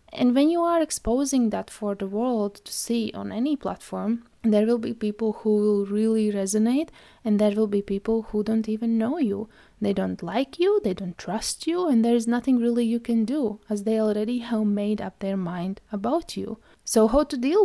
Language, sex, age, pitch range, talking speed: English, female, 20-39, 205-245 Hz, 210 wpm